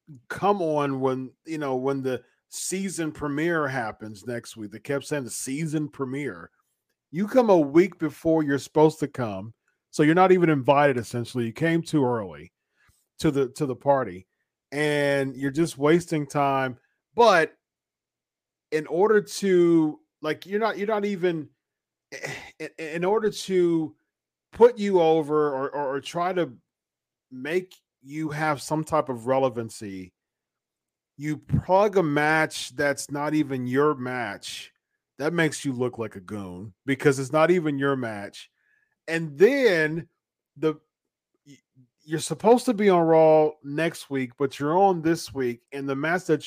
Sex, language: male, English